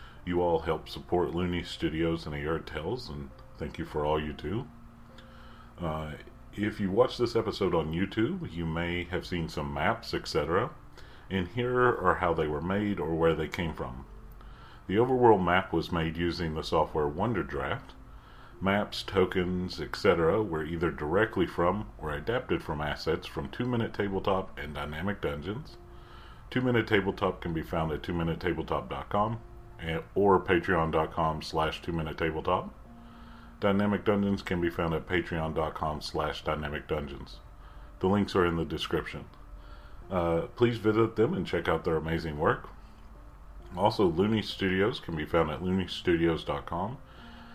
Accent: American